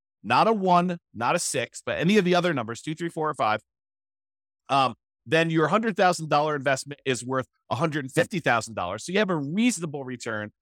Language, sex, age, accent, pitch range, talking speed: English, male, 30-49, American, 120-165 Hz, 175 wpm